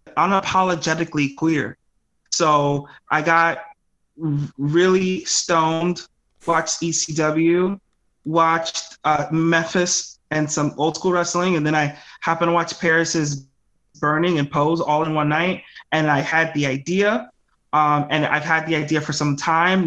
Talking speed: 140 wpm